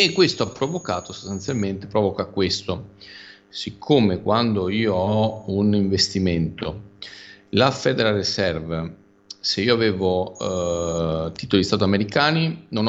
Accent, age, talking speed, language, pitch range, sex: native, 40-59, 110 wpm, Italian, 95-110 Hz, male